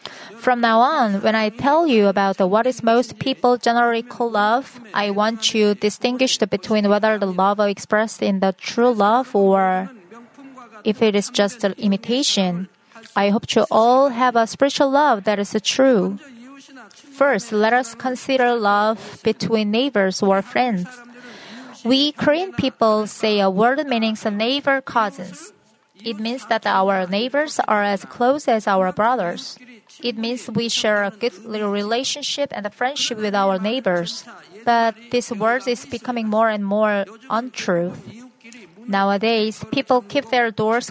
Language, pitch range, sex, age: Korean, 205-245 Hz, female, 30-49